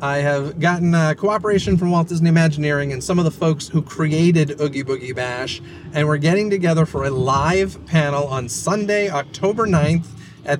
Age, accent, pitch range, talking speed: 30-49, American, 135-165 Hz, 180 wpm